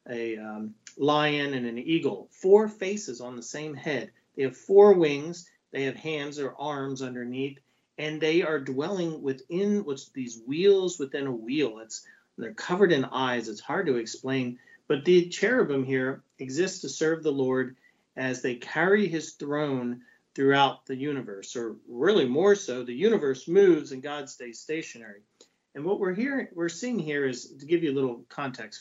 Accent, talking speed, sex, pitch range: American, 175 wpm, male, 130-170 Hz